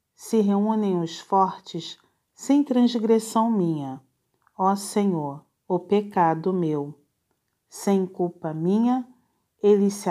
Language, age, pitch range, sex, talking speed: Portuguese, 40-59, 170-230 Hz, female, 100 wpm